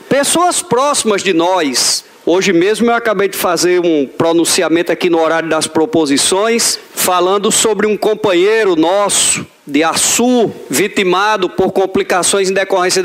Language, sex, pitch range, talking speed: Portuguese, male, 190-275 Hz, 135 wpm